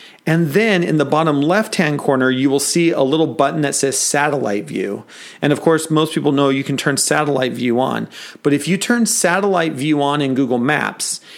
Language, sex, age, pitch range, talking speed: English, male, 40-59, 140-170 Hz, 205 wpm